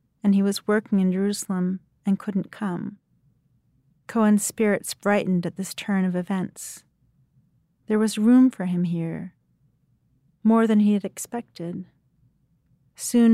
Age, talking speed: 40-59, 130 wpm